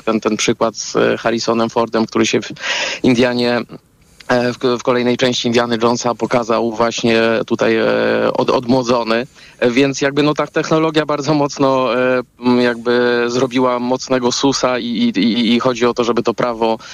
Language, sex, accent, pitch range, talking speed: Polish, male, native, 120-145 Hz, 140 wpm